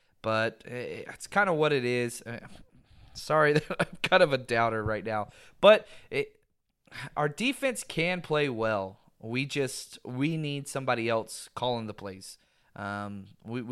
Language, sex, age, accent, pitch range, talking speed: English, male, 20-39, American, 130-185 Hz, 150 wpm